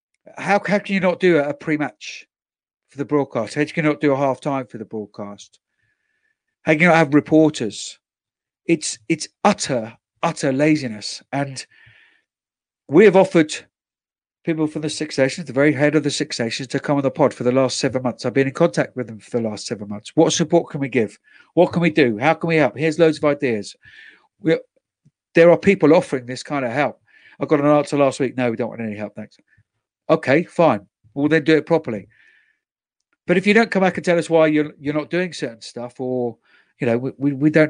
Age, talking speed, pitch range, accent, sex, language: 50-69, 220 wpm, 130-170 Hz, British, male, English